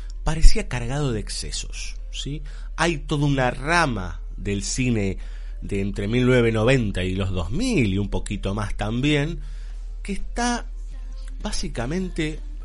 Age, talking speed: 30-49, 120 wpm